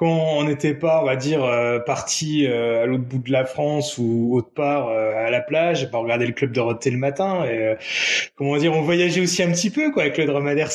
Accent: French